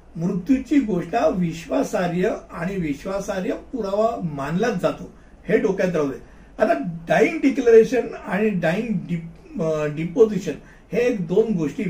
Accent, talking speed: native, 50 wpm